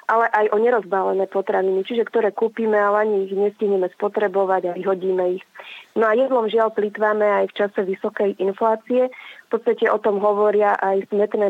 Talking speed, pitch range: 170 wpm, 195-215 Hz